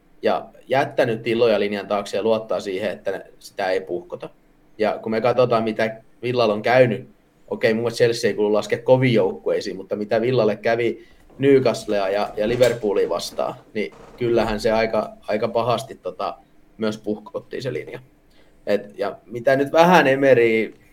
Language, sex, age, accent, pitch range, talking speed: Finnish, male, 20-39, native, 110-160 Hz, 150 wpm